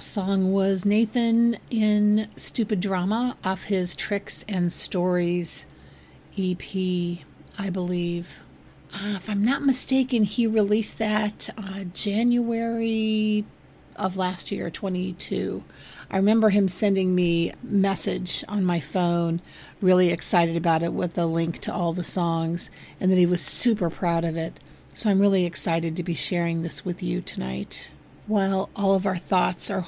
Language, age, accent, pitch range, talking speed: English, 50-69, American, 175-205 Hz, 145 wpm